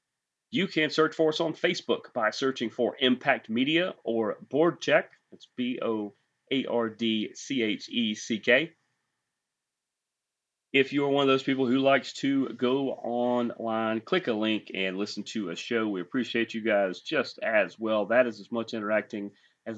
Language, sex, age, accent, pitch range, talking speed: English, male, 30-49, American, 110-135 Hz, 145 wpm